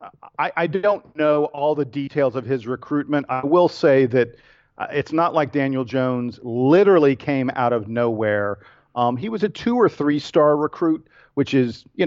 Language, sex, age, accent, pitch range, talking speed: English, male, 50-69, American, 120-145 Hz, 175 wpm